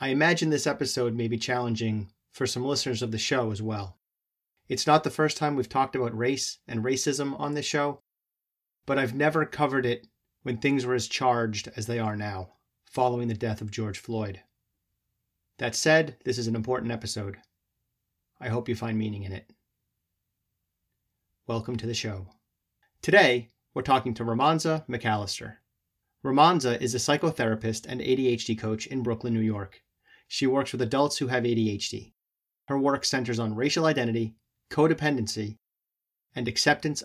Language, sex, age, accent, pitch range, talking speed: English, male, 30-49, American, 110-135 Hz, 160 wpm